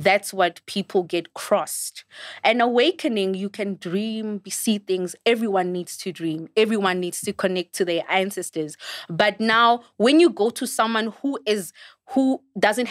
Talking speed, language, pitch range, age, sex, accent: 155 wpm, English, 185-230 Hz, 20-39, female, South African